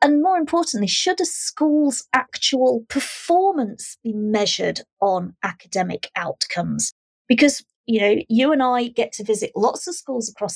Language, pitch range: English, 190-255 Hz